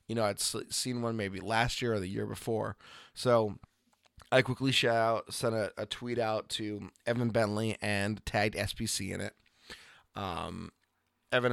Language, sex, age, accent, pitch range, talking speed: English, male, 20-39, American, 105-115 Hz, 165 wpm